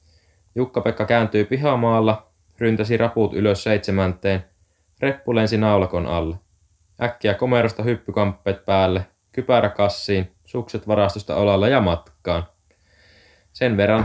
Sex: male